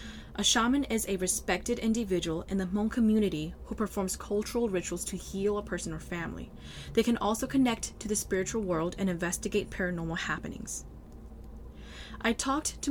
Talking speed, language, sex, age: 165 wpm, English, female, 20-39